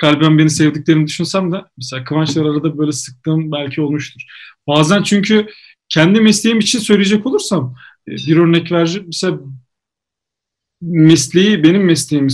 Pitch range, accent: 150-200 Hz, native